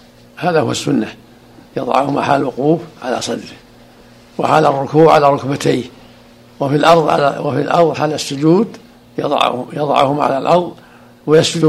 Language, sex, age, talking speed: Arabic, male, 60-79, 125 wpm